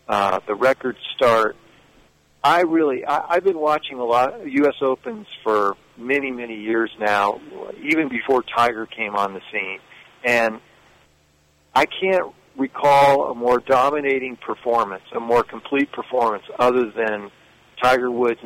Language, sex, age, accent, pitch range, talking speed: English, male, 50-69, American, 115-160 Hz, 135 wpm